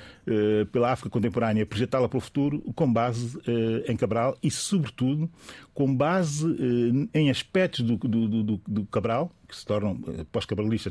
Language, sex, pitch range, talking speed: Portuguese, male, 110-135 Hz, 150 wpm